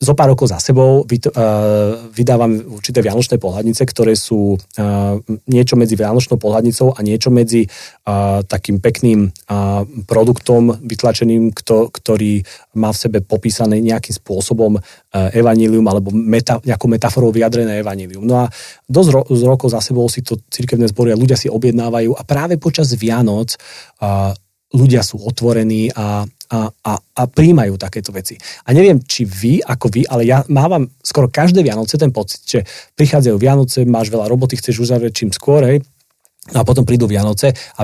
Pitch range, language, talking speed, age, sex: 105-130 Hz, Slovak, 145 wpm, 40-59, male